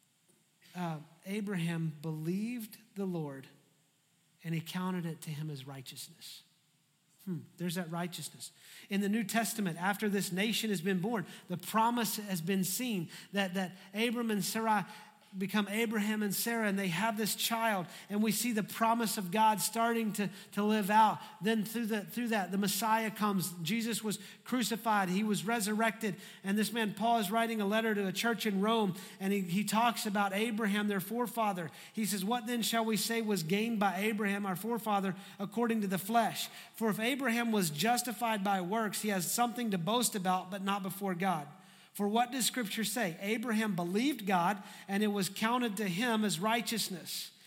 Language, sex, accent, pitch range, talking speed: English, male, American, 190-225 Hz, 180 wpm